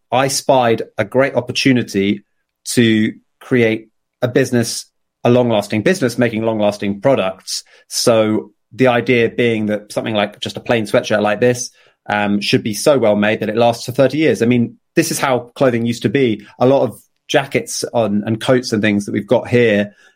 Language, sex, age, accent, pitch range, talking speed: English, male, 30-49, British, 105-125 Hz, 190 wpm